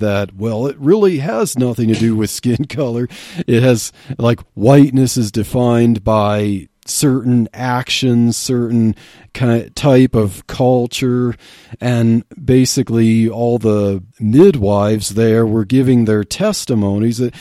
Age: 40-59